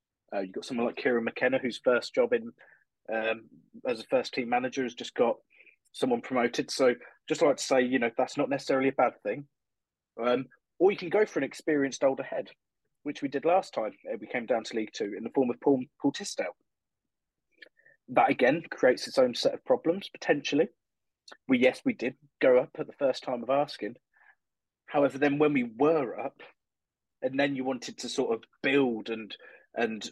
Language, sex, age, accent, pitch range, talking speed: English, male, 30-49, British, 130-205 Hz, 200 wpm